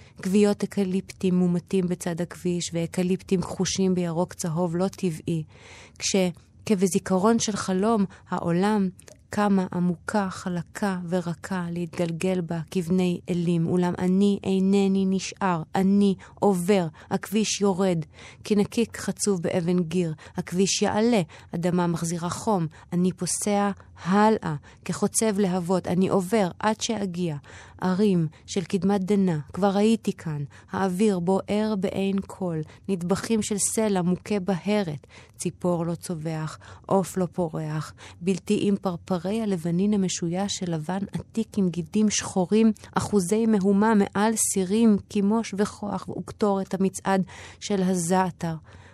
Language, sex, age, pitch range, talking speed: Hebrew, female, 20-39, 175-200 Hz, 115 wpm